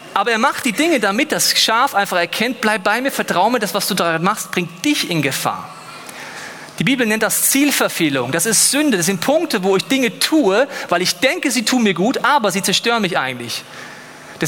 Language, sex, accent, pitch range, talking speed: German, male, German, 165-250 Hz, 215 wpm